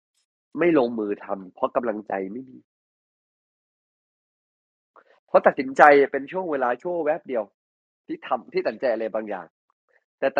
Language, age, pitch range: Thai, 20-39, 100-150 Hz